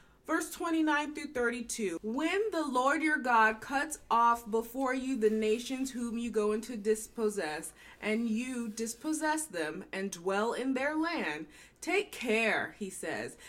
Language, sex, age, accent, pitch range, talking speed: English, female, 30-49, American, 205-265 Hz, 145 wpm